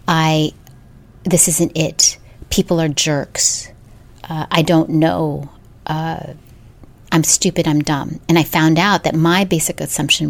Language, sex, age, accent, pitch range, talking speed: English, female, 30-49, American, 150-185 Hz, 140 wpm